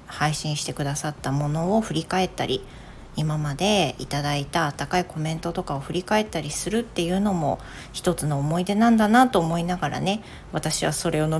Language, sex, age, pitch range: Japanese, female, 40-59, 140-180 Hz